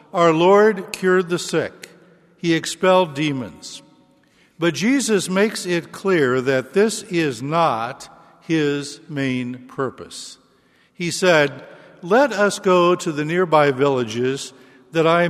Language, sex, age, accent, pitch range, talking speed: English, male, 60-79, American, 140-185 Hz, 120 wpm